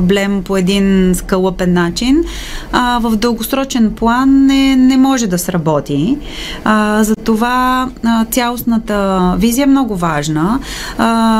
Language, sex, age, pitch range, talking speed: Bulgarian, female, 20-39, 180-240 Hz, 95 wpm